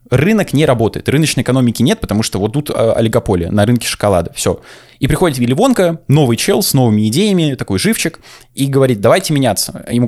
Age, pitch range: 20-39, 110-145 Hz